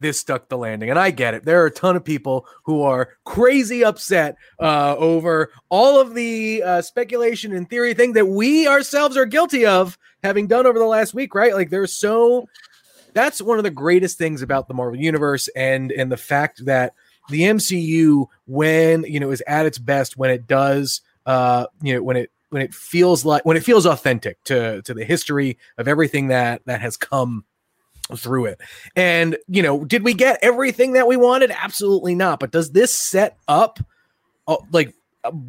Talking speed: 195 wpm